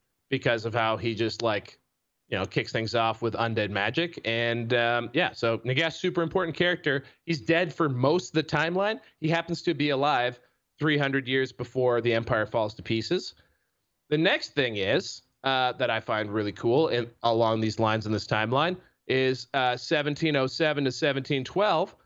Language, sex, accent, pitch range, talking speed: English, male, American, 120-165 Hz, 170 wpm